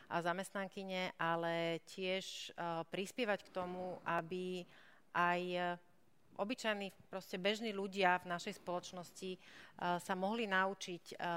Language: Slovak